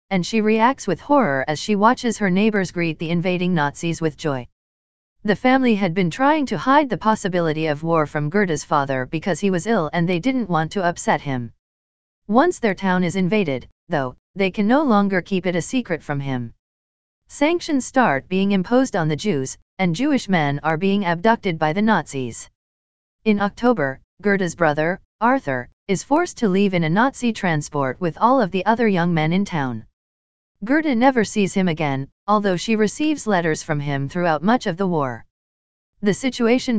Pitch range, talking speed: 150-215 Hz, 185 wpm